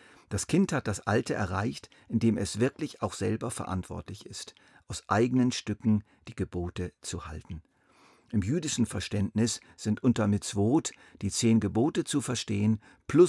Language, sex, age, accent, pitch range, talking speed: German, male, 50-69, German, 100-120 Hz, 145 wpm